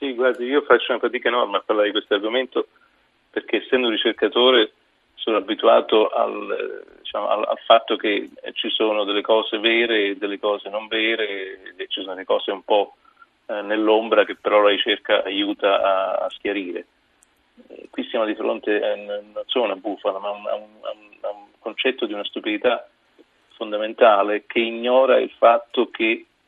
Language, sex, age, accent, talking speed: Italian, male, 40-59, native, 170 wpm